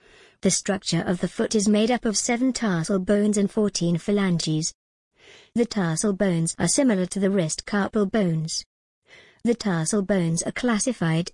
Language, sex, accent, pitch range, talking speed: English, male, British, 170-210 Hz, 160 wpm